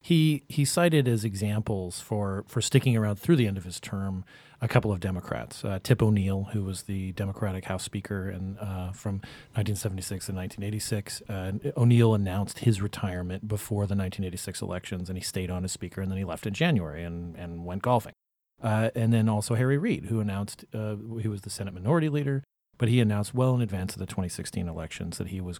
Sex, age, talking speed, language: male, 40-59, 205 wpm, English